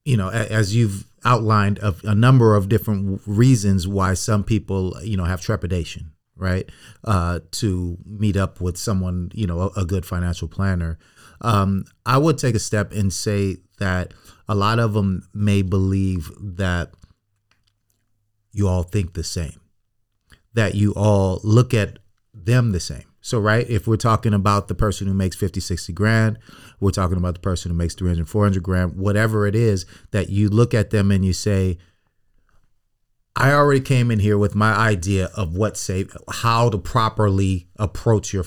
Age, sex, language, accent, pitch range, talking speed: 30-49, male, English, American, 95-110 Hz, 170 wpm